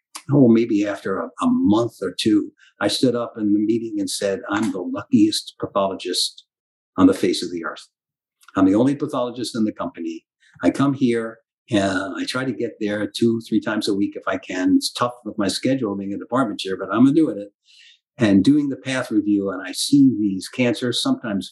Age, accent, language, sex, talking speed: 50-69, American, English, male, 210 wpm